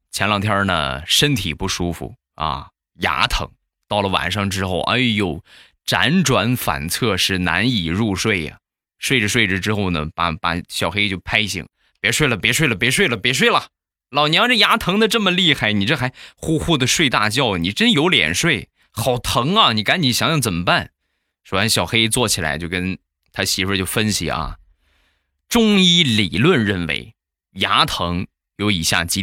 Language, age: Chinese, 20-39